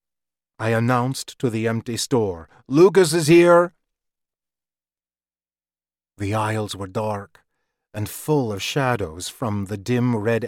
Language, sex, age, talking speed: English, male, 40-59, 120 wpm